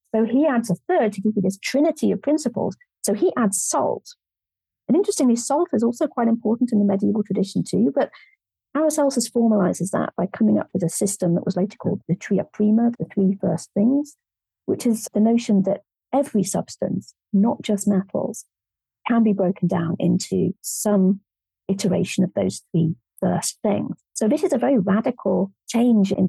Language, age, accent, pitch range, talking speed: English, 40-59, British, 195-240 Hz, 180 wpm